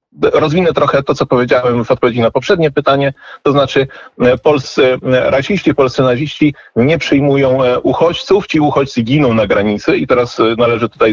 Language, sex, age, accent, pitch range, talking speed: Polish, male, 40-59, native, 110-150 Hz, 150 wpm